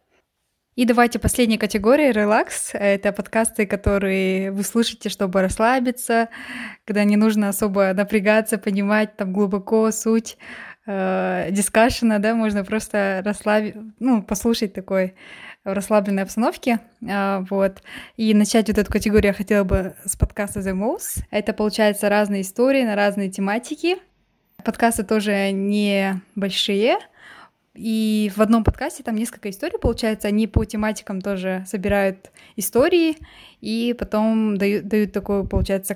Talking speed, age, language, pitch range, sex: 125 wpm, 20-39, Russian, 200-225 Hz, female